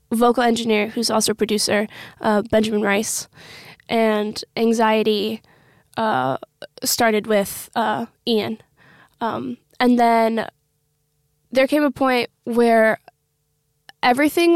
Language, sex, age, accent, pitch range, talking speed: English, female, 20-39, American, 215-235 Hz, 105 wpm